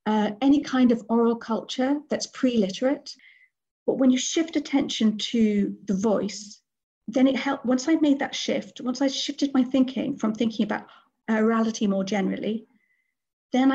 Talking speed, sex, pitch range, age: 155 wpm, female, 210-255 Hz, 40-59